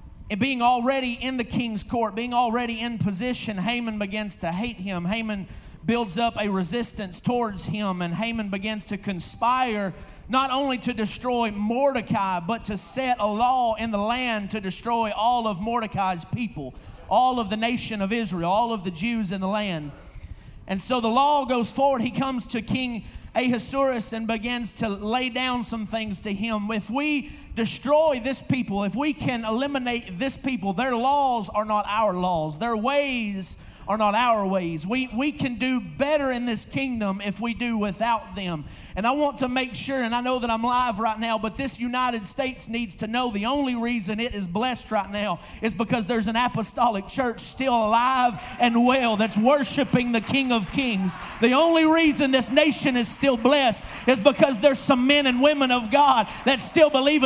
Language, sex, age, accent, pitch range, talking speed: English, male, 40-59, American, 215-265 Hz, 190 wpm